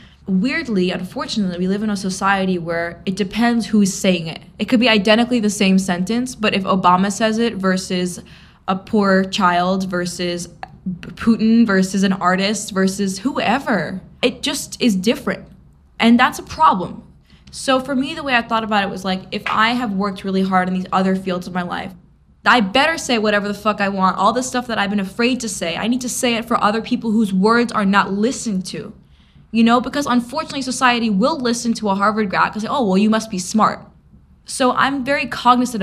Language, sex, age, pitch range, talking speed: English, female, 10-29, 190-240 Hz, 205 wpm